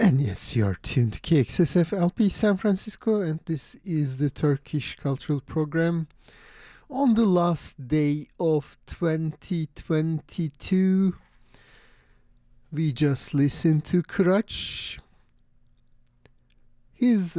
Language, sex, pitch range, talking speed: English, male, 125-165 Hz, 100 wpm